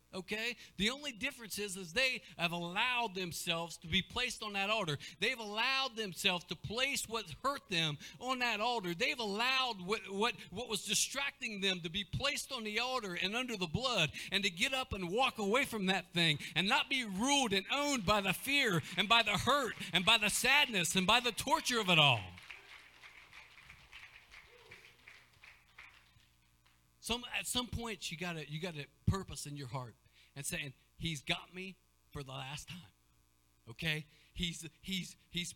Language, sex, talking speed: English, male, 175 wpm